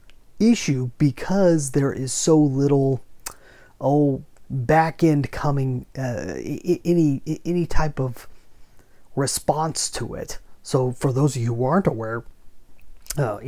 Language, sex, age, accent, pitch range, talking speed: English, male, 30-49, American, 125-155 Hz, 130 wpm